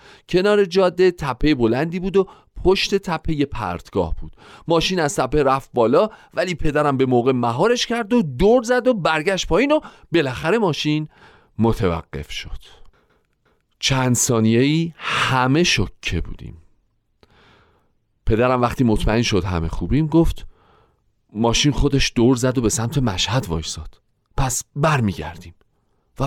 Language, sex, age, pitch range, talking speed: Persian, male, 40-59, 110-180 Hz, 130 wpm